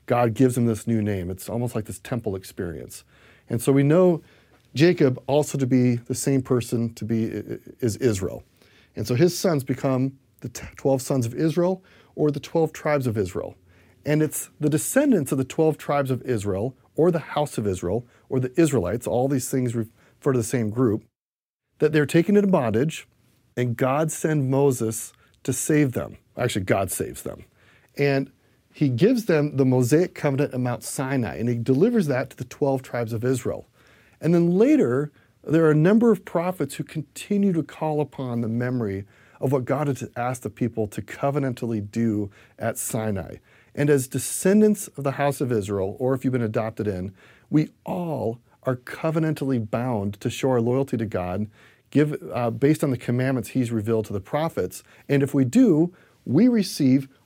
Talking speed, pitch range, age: 185 wpm, 115-150 Hz, 40-59